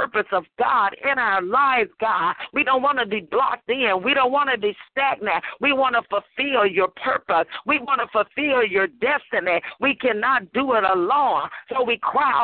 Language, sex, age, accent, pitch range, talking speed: English, female, 50-69, American, 195-275 Hz, 195 wpm